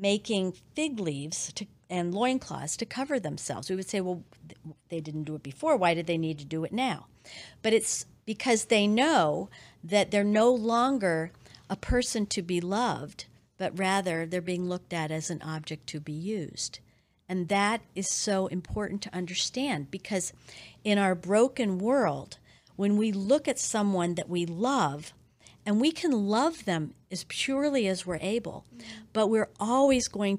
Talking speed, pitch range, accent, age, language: 170 wpm, 165-215 Hz, American, 50-69, English